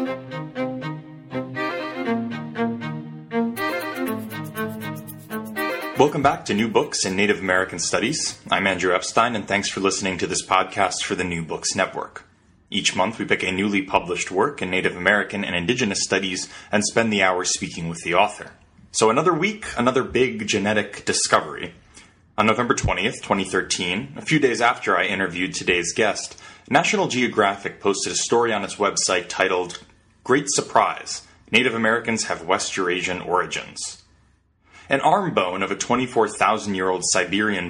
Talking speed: 140 wpm